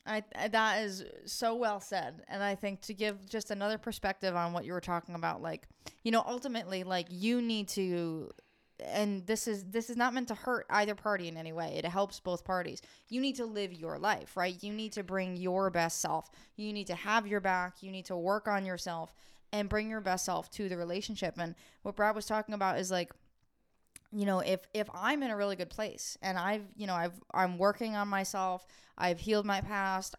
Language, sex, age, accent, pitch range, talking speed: English, female, 20-39, American, 185-215 Hz, 225 wpm